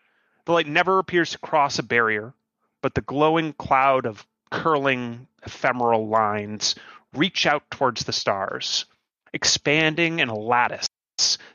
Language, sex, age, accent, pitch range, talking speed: English, male, 30-49, American, 110-140 Hz, 130 wpm